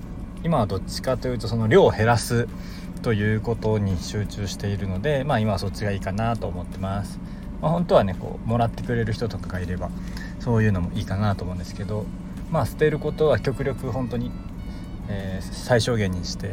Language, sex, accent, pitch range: Japanese, male, native, 95-115 Hz